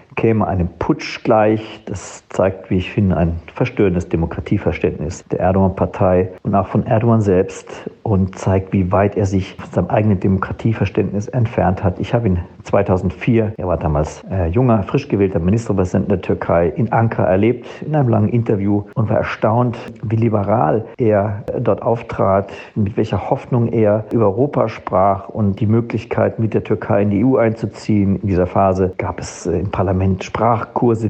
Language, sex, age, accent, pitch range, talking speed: German, male, 50-69, German, 90-110 Hz, 160 wpm